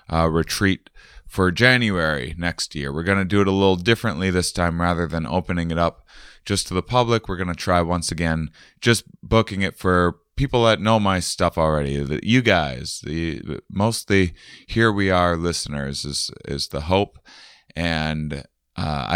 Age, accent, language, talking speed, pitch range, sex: 30-49, American, English, 180 wpm, 80-95 Hz, male